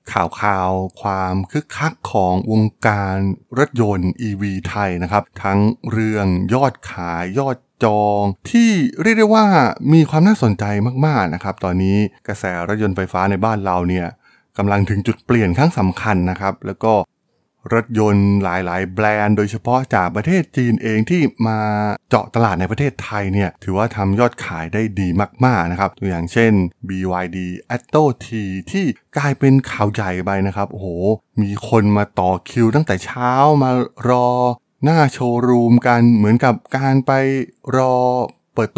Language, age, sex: Thai, 20-39, male